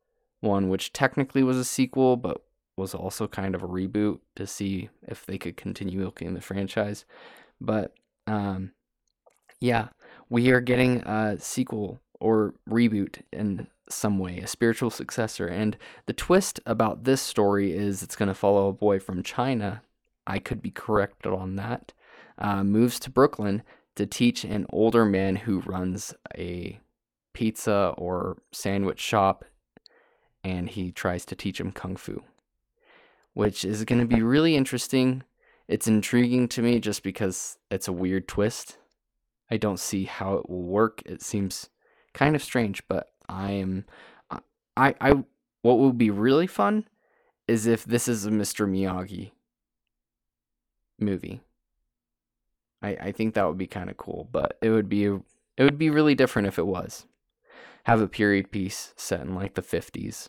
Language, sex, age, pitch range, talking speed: English, male, 20-39, 95-120 Hz, 160 wpm